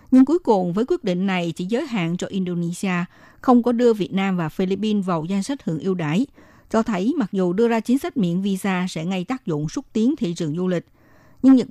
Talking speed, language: 240 wpm, Vietnamese